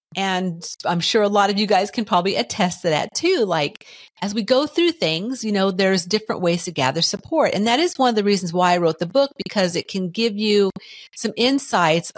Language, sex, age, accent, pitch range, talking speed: English, female, 50-69, American, 160-215 Hz, 230 wpm